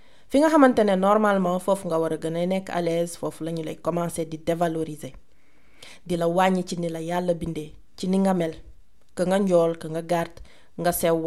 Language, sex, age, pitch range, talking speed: French, female, 30-49, 170-210 Hz, 115 wpm